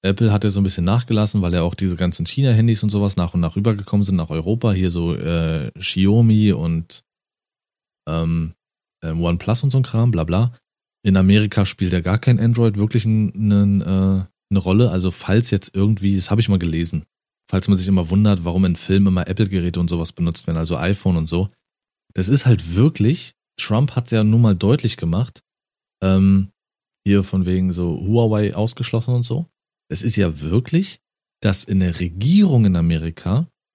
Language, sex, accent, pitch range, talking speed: German, male, German, 90-110 Hz, 190 wpm